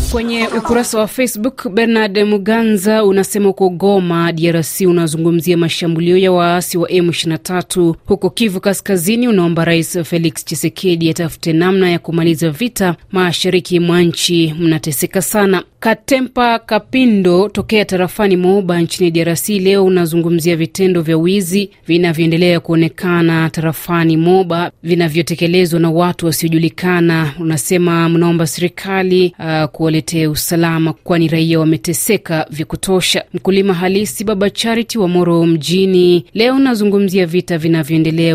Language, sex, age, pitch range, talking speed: Swahili, female, 30-49, 165-195 Hz, 115 wpm